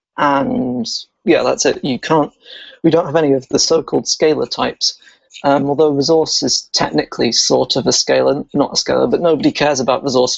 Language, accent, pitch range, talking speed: English, British, 140-170 Hz, 185 wpm